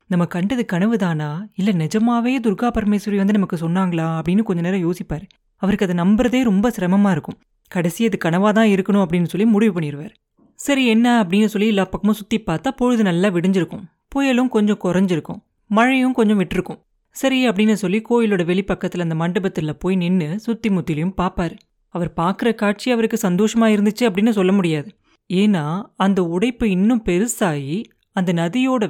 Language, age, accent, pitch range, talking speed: Tamil, 30-49, native, 180-225 Hz, 150 wpm